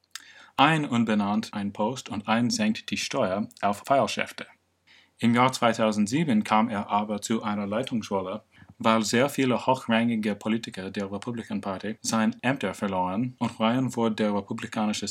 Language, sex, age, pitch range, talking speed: English, male, 30-49, 100-120 Hz, 145 wpm